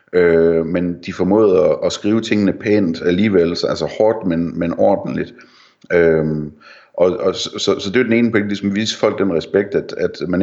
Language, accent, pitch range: Danish, native, 80-100 Hz